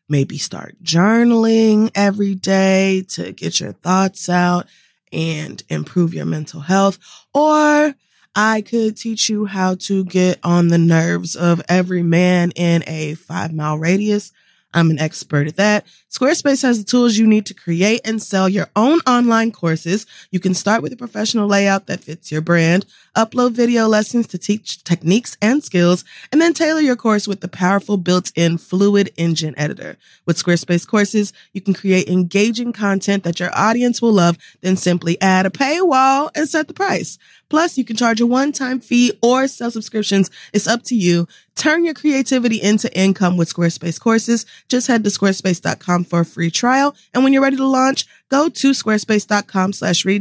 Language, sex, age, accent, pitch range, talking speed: English, female, 20-39, American, 175-230 Hz, 170 wpm